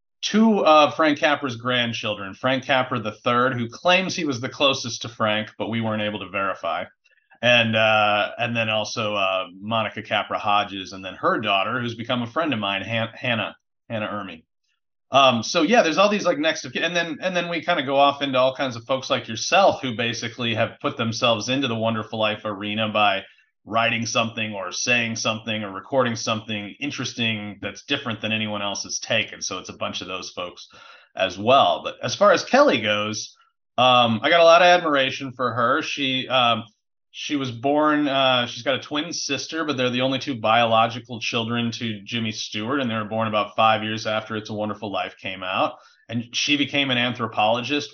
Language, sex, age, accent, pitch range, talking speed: English, male, 30-49, American, 110-135 Hz, 205 wpm